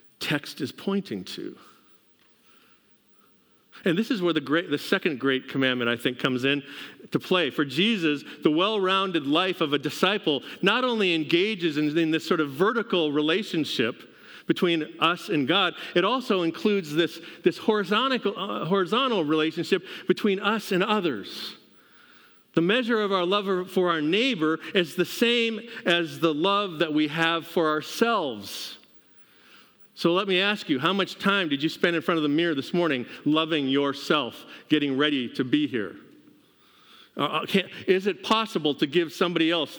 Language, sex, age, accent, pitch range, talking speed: English, male, 50-69, American, 150-200 Hz, 160 wpm